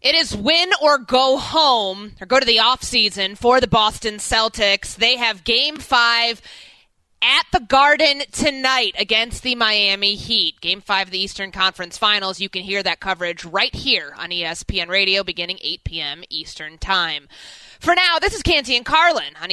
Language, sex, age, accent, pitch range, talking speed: English, female, 20-39, American, 185-245 Hz, 175 wpm